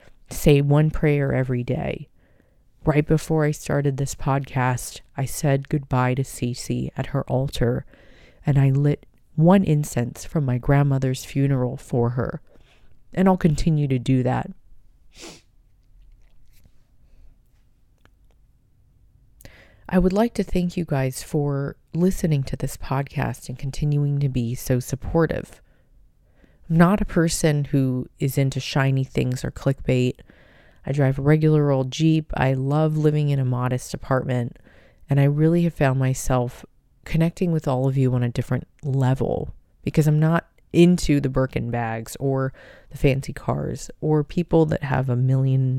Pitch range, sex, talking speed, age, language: 130-155 Hz, female, 145 wpm, 30-49, English